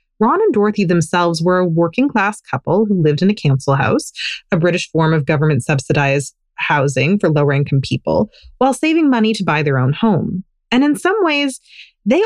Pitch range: 160-240 Hz